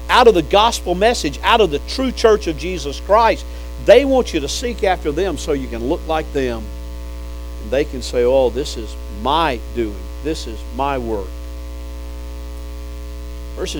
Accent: American